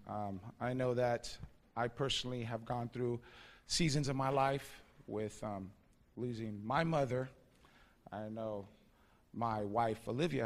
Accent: American